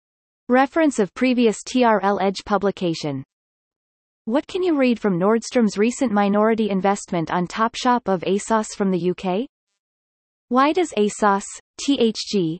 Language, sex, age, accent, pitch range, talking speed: English, female, 30-49, American, 185-245 Hz, 125 wpm